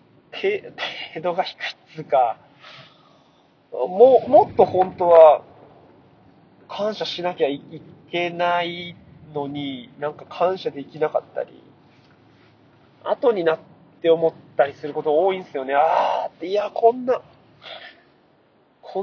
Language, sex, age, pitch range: Japanese, male, 20-39, 145-210 Hz